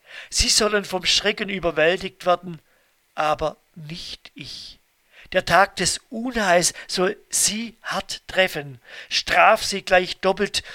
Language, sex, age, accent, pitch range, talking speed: German, male, 50-69, German, 145-185 Hz, 115 wpm